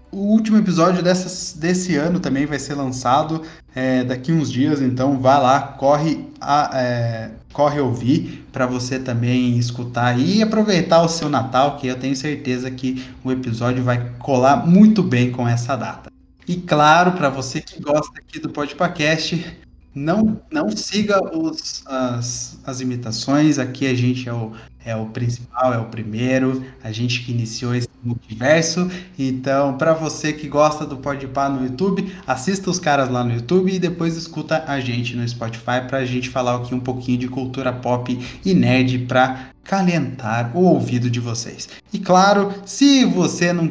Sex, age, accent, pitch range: male, 20-39, Brazilian, 125-165 Hz